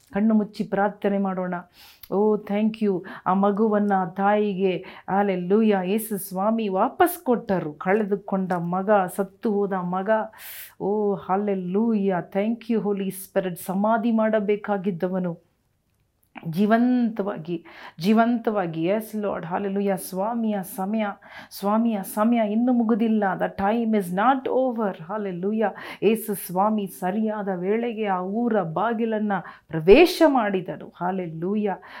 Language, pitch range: Kannada, 190-225 Hz